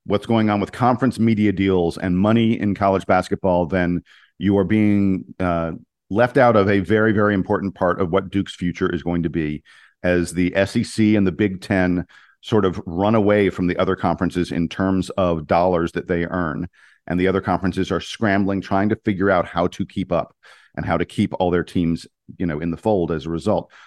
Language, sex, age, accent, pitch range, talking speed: English, male, 50-69, American, 95-115 Hz, 210 wpm